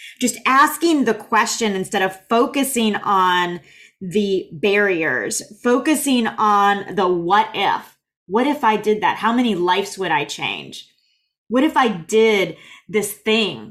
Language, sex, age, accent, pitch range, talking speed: English, female, 20-39, American, 195-245 Hz, 140 wpm